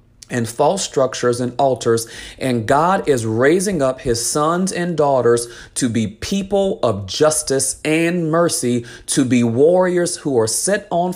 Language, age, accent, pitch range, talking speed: English, 30-49, American, 120-155 Hz, 150 wpm